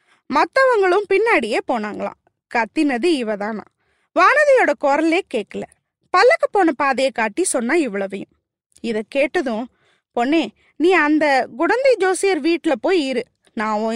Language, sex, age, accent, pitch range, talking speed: Tamil, female, 20-39, native, 250-360 Hz, 105 wpm